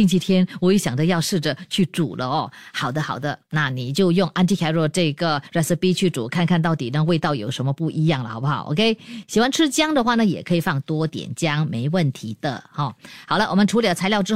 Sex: female